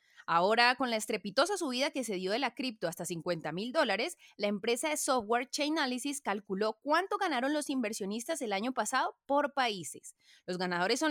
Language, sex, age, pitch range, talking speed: Spanish, female, 20-39, 210-285 Hz, 180 wpm